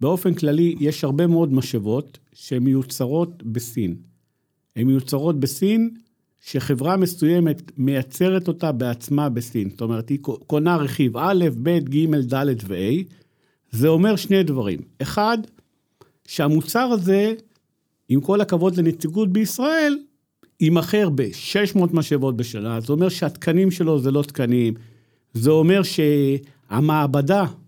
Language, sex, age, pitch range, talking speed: Hebrew, male, 50-69, 135-185 Hz, 115 wpm